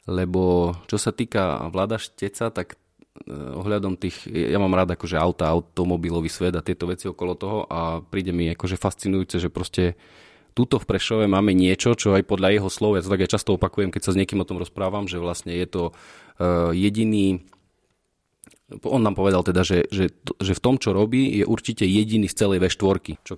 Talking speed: 190 wpm